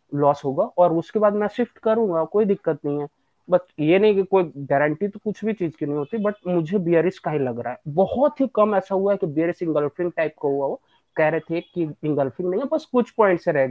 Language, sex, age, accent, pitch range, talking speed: English, male, 30-49, Indian, 150-190 Hz, 235 wpm